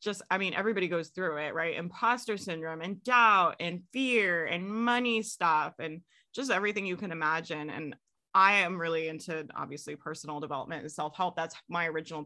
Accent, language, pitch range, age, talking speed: American, English, 160-195 Hz, 20-39, 175 wpm